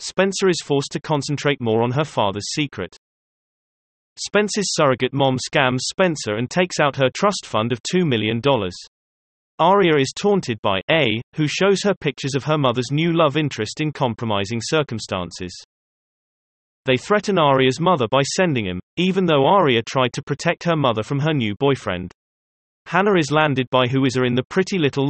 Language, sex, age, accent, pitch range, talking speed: English, male, 30-49, British, 115-160 Hz, 170 wpm